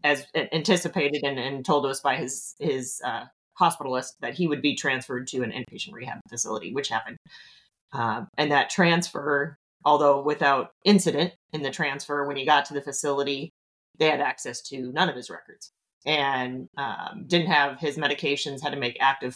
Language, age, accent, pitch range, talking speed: English, 30-49, American, 135-155 Hz, 175 wpm